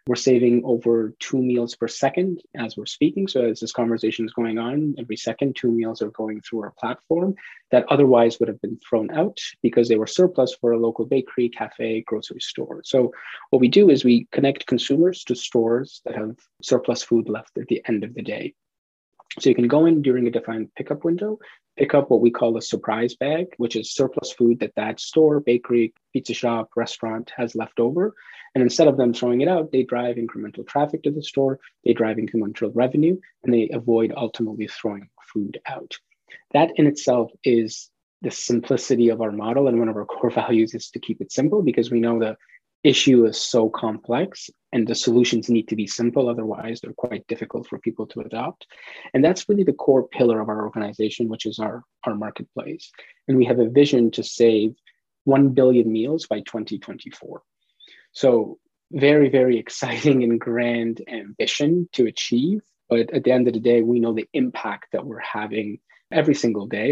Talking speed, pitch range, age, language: 195 wpm, 115-135 Hz, 30-49, English